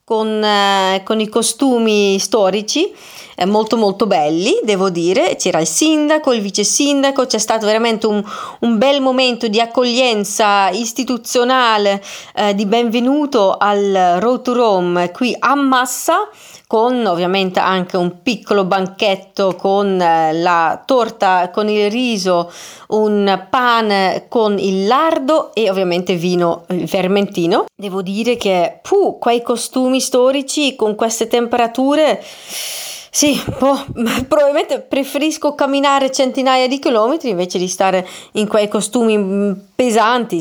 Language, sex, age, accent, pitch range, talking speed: Italian, female, 30-49, native, 195-255 Hz, 120 wpm